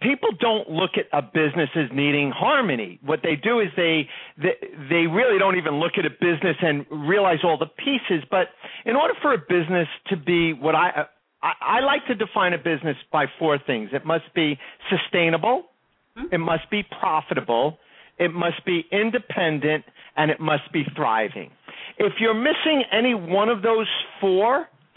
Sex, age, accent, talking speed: male, 50-69, American, 175 wpm